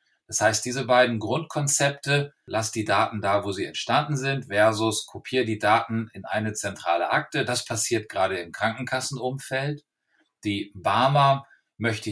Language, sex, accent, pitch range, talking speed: German, male, German, 105-130 Hz, 145 wpm